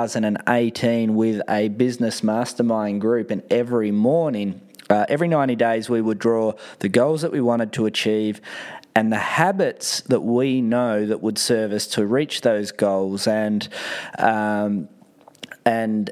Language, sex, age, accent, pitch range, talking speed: English, male, 20-39, Australian, 105-120 Hz, 145 wpm